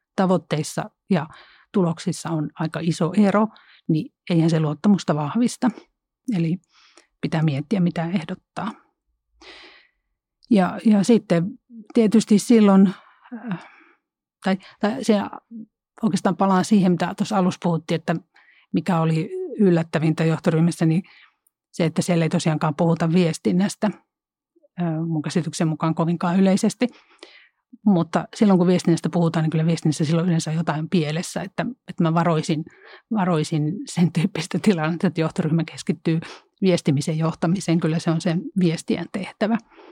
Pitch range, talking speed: 165-205 Hz, 120 wpm